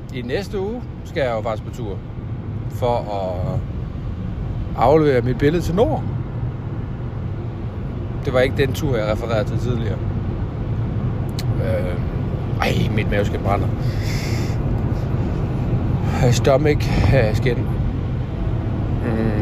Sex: male